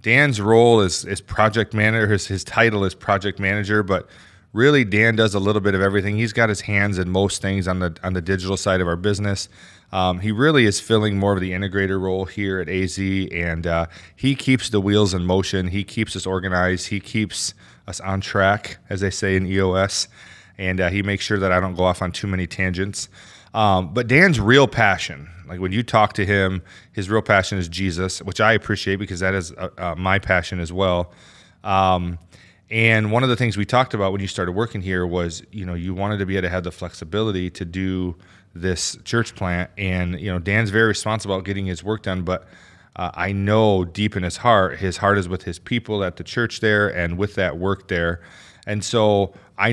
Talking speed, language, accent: 220 wpm, English, American